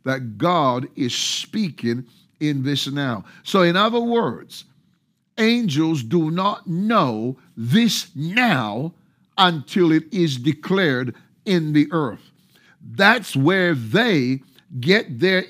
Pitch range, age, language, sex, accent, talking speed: 135-185 Hz, 50-69, English, male, American, 110 wpm